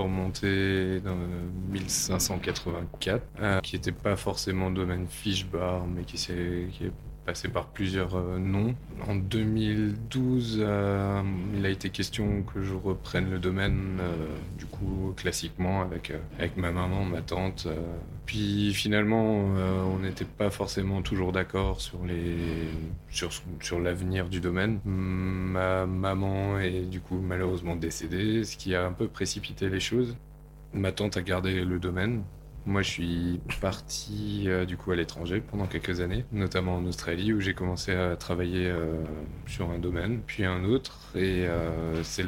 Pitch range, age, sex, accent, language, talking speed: 90-100 Hz, 20-39, male, French, French, 155 wpm